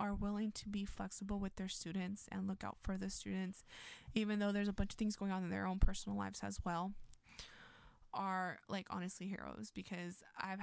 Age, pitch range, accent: 20-39, 180-200 Hz, American